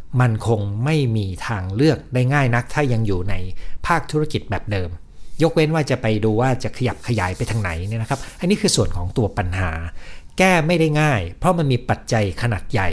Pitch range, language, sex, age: 90-130 Hz, Thai, male, 60-79